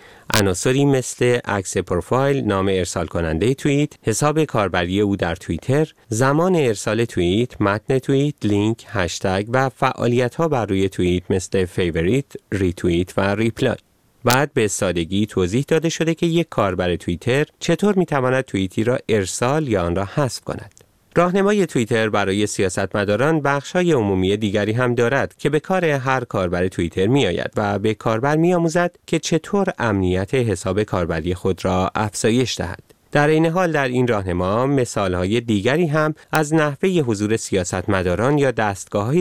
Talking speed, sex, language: 145 wpm, male, Persian